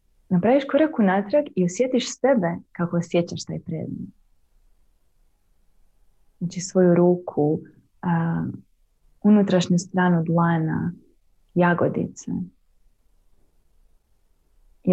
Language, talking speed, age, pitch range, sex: Croatian, 70 wpm, 20-39, 155-210 Hz, female